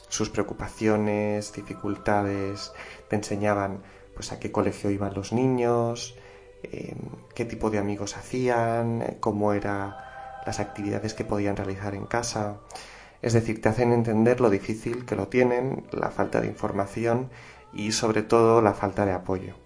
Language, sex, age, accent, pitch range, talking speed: Spanish, male, 20-39, Spanish, 100-115 Hz, 145 wpm